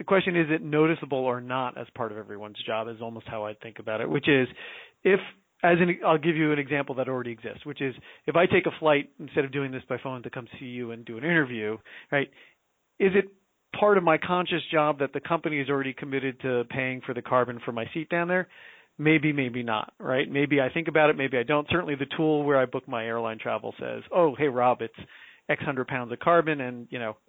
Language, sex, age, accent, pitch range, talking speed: English, male, 40-59, American, 125-160 Hz, 240 wpm